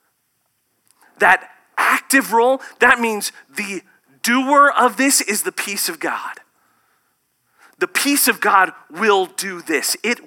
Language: English